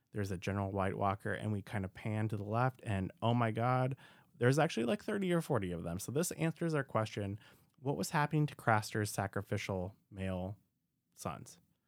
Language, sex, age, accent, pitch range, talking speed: English, male, 20-39, American, 95-130 Hz, 190 wpm